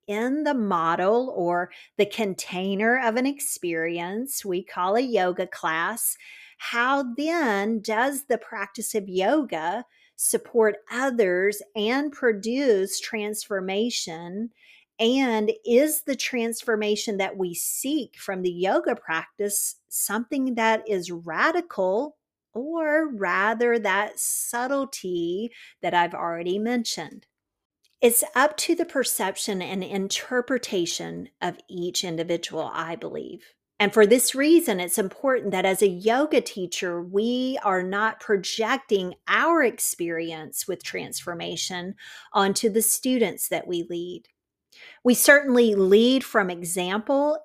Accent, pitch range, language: American, 190-250 Hz, English